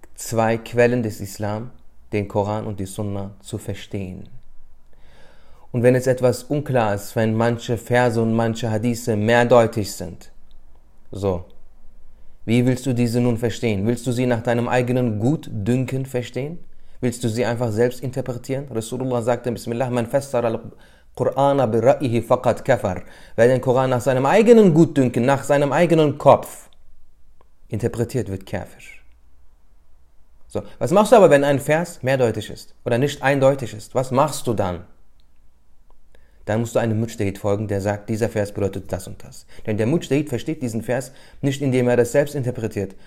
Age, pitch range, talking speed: 30-49, 105-130 Hz, 155 wpm